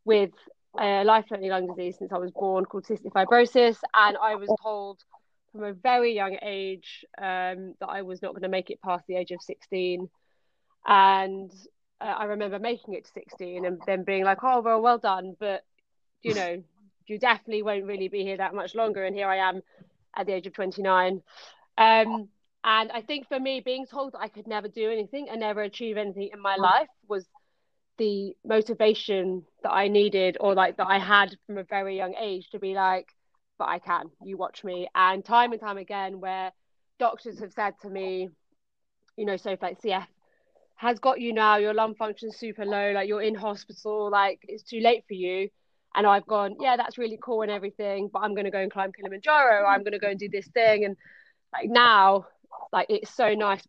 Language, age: English, 30-49